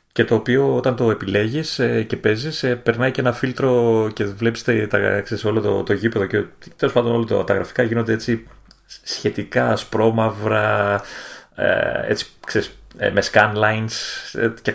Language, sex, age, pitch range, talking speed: Greek, male, 30-49, 105-125 Hz, 135 wpm